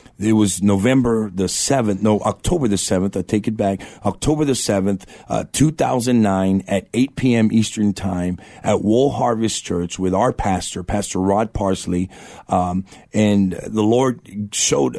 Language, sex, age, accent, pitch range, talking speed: English, male, 50-69, American, 95-110 Hz, 160 wpm